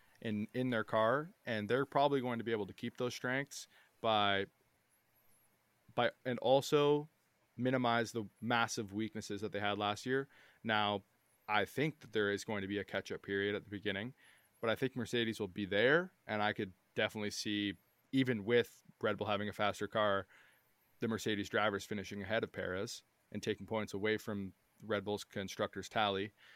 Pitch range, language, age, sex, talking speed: 105-125 Hz, English, 20-39, male, 180 wpm